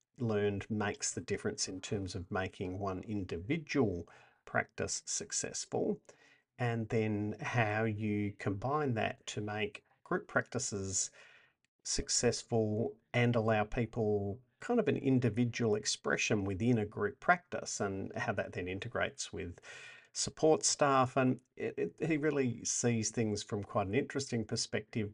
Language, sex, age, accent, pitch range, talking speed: English, male, 50-69, Australian, 100-120 Hz, 125 wpm